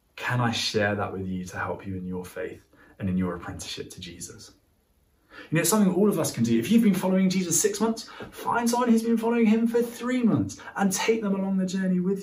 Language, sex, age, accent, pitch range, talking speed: English, male, 20-39, British, 115-165 Hz, 240 wpm